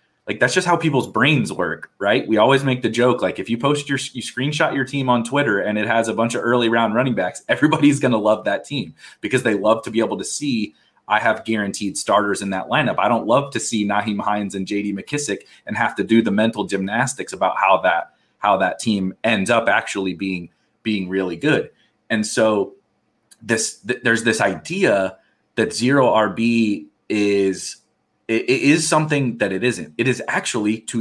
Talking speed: 205 wpm